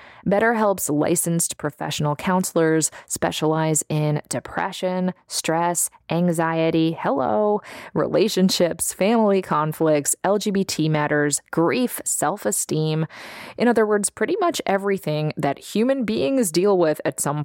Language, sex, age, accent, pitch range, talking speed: English, female, 20-39, American, 150-195 Hz, 105 wpm